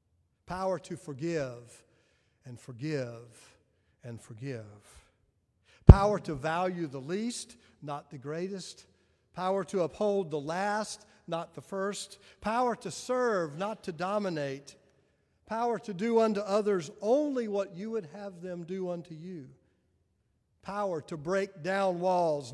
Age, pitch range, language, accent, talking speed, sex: 50-69, 120-200 Hz, English, American, 130 wpm, male